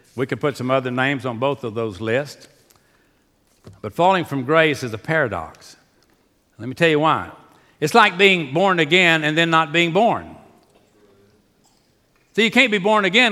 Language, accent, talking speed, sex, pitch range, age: English, American, 175 wpm, male, 135-180 Hz, 60-79